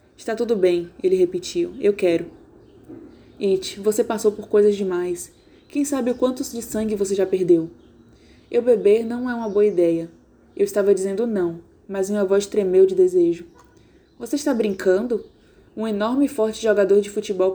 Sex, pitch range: female, 190-270 Hz